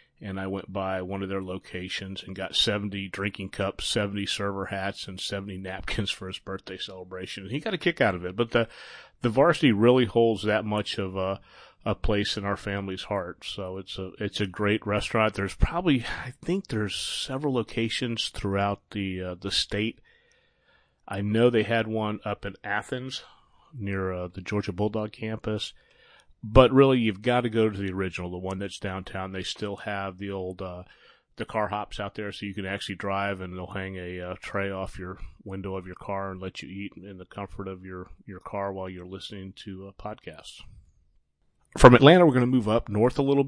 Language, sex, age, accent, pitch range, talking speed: English, male, 30-49, American, 95-110 Hz, 205 wpm